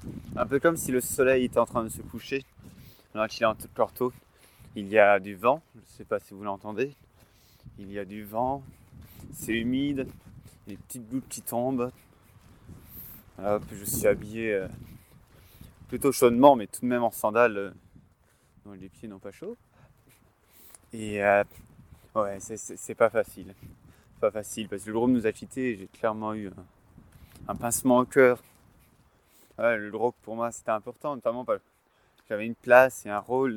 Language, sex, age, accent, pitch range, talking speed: French, male, 20-39, French, 100-120 Hz, 190 wpm